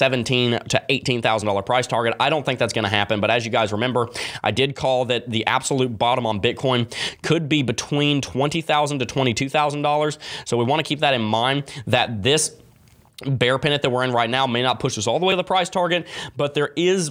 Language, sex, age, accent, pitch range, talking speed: English, male, 20-39, American, 115-135 Hz, 220 wpm